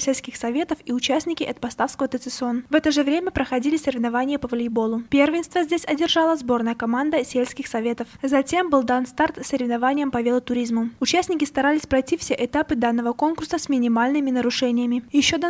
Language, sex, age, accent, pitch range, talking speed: Russian, female, 20-39, native, 250-310 Hz, 160 wpm